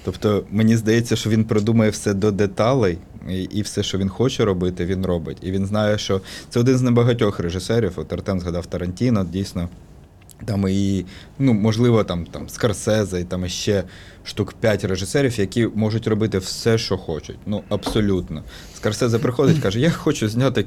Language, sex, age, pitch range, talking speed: Ukrainian, male, 20-39, 90-110 Hz, 170 wpm